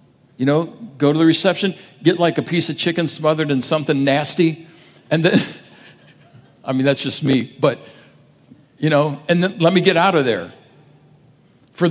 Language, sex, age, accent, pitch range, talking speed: English, male, 60-79, American, 145-180 Hz, 175 wpm